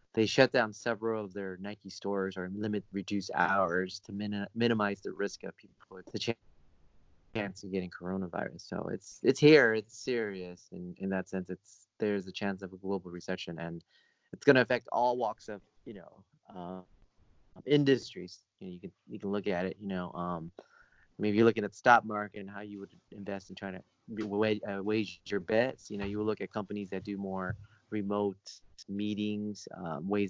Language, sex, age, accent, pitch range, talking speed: English, male, 30-49, American, 95-110 Hz, 200 wpm